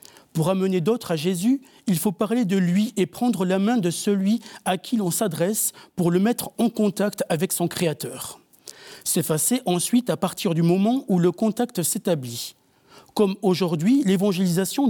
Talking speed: 165 wpm